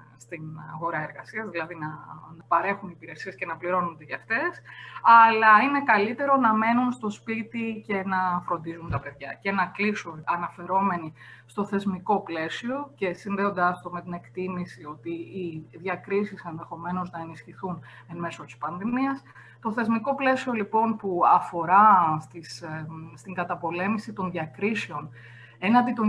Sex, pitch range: female, 165-210 Hz